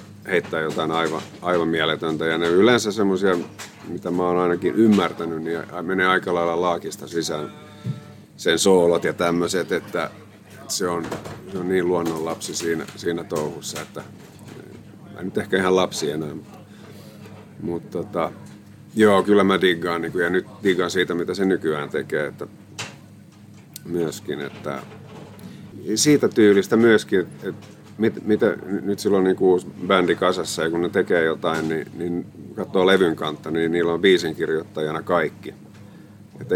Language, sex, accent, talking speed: Finnish, male, native, 145 wpm